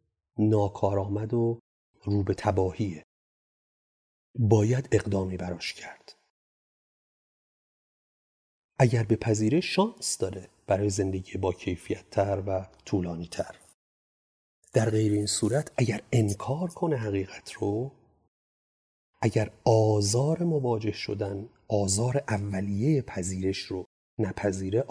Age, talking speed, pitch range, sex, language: 40-59, 95 wpm, 100-125 Hz, male, Persian